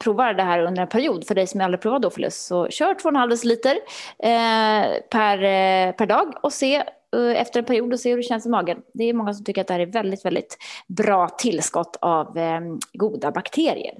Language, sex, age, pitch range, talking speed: Swedish, female, 20-39, 180-250 Hz, 220 wpm